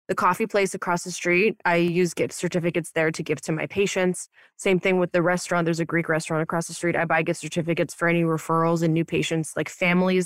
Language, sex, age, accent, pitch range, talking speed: English, female, 20-39, American, 165-185 Hz, 235 wpm